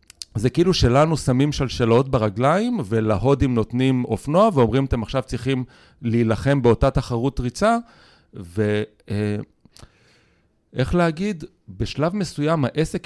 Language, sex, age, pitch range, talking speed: Hebrew, male, 40-59, 110-155 Hz, 105 wpm